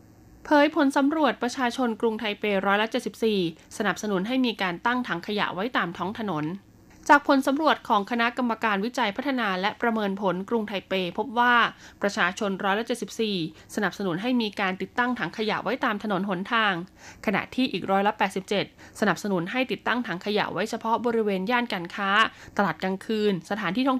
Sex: female